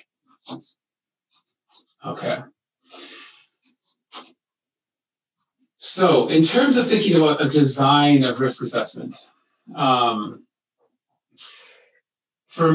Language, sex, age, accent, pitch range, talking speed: English, male, 30-49, American, 125-165 Hz, 65 wpm